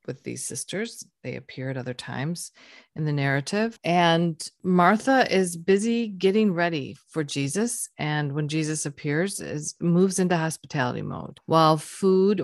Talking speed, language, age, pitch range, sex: 145 wpm, English, 40-59, 150-190 Hz, female